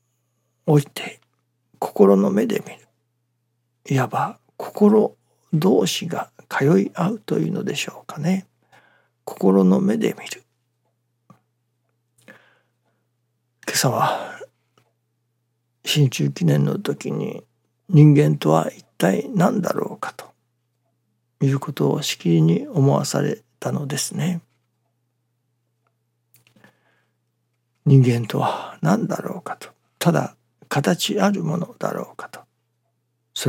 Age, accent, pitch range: 60-79, native, 115-140 Hz